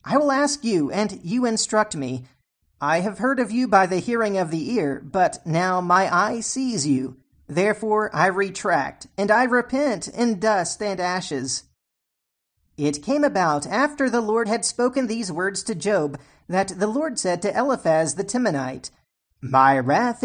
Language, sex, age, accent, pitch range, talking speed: English, male, 40-59, American, 150-225 Hz, 170 wpm